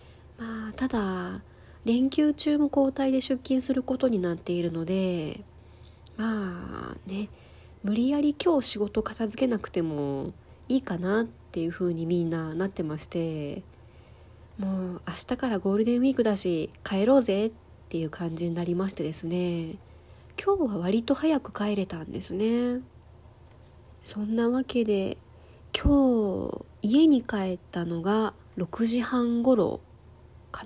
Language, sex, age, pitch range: Japanese, female, 20-39, 175-235 Hz